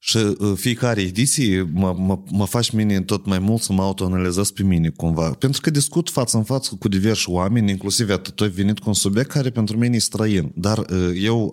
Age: 30-49